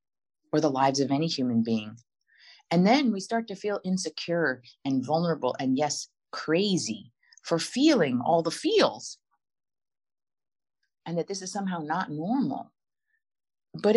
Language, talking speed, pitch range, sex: English, 135 wpm, 130-195 Hz, female